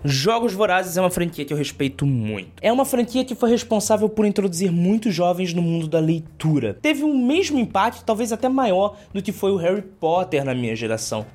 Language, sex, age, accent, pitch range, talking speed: Portuguese, male, 20-39, Brazilian, 155-230 Hz, 205 wpm